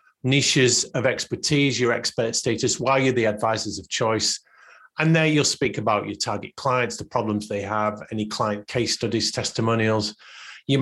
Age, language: 40-59, English